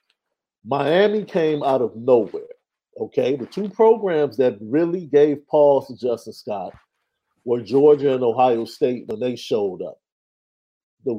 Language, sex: English, male